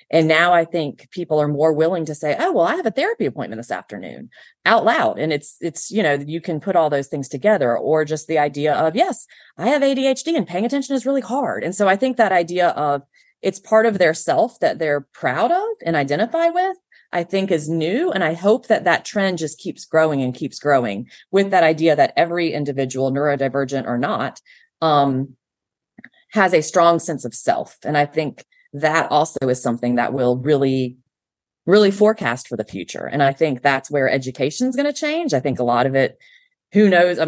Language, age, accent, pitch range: English, 30-49, American, 130-190 Hz